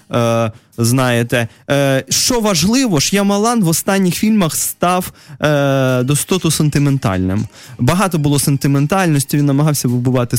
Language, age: Russian, 20-39